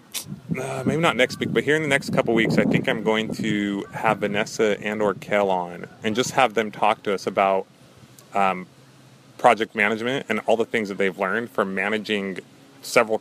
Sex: male